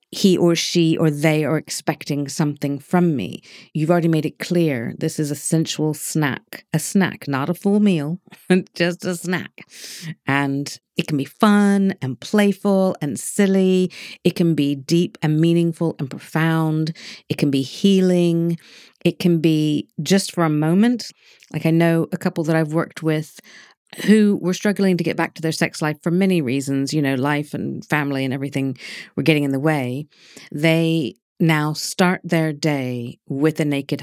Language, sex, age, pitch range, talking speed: English, female, 50-69, 145-175 Hz, 175 wpm